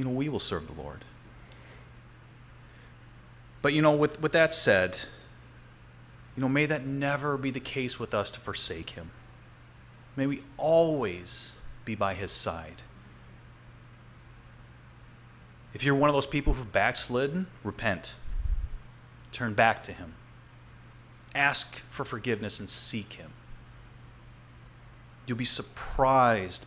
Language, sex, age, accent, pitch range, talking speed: English, male, 30-49, American, 105-130 Hz, 125 wpm